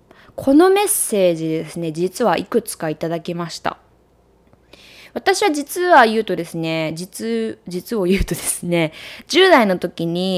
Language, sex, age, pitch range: Japanese, female, 20-39, 180-260 Hz